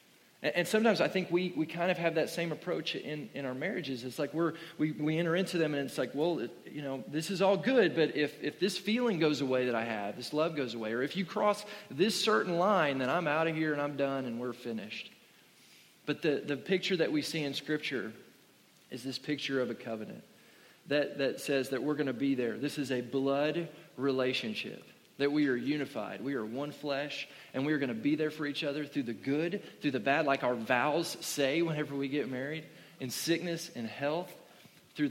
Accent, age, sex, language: American, 40-59, male, English